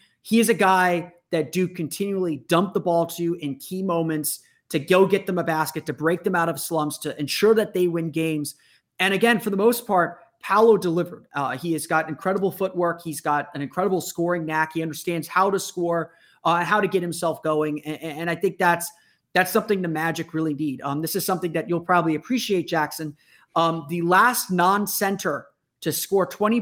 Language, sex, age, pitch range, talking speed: English, male, 30-49, 155-185 Hz, 205 wpm